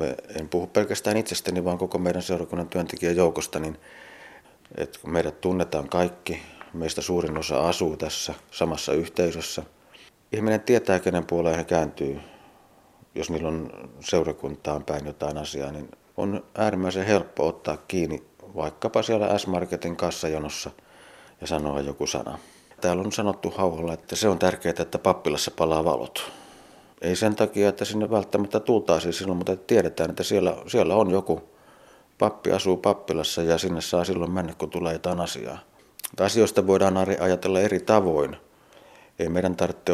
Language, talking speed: Finnish, 140 wpm